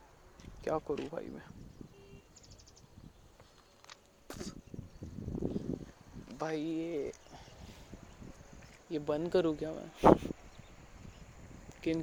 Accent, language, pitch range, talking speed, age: native, Marathi, 155-170 Hz, 60 wpm, 20-39